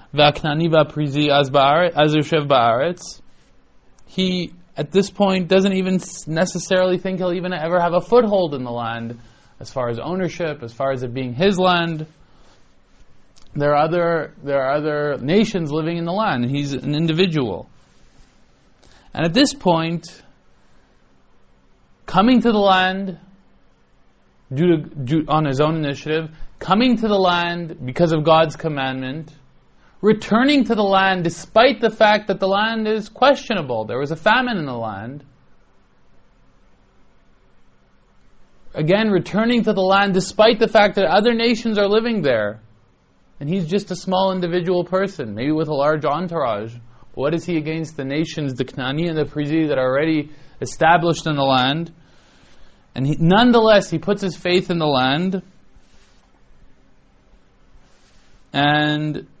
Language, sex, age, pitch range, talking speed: English, male, 20-39, 130-185 Hz, 140 wpm